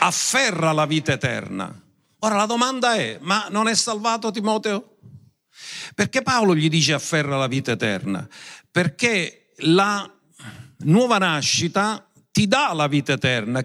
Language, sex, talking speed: Italian, male, 130 wpm